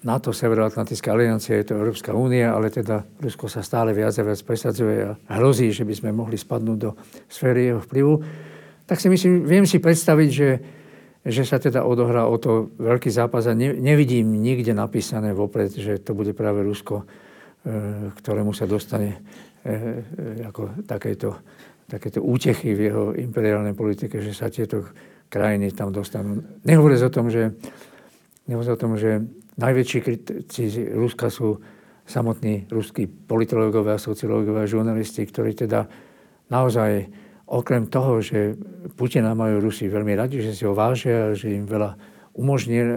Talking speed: 140 wpm